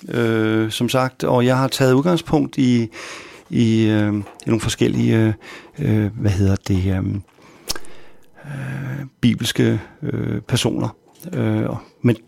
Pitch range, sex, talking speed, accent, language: 110-145 Hz, male, 90 wpm, native, Danish